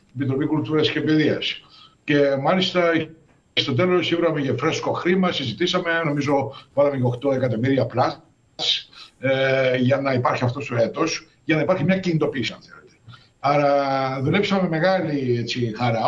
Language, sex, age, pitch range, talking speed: Greek, male, 60-79, 130-175 Hz, 130 wpm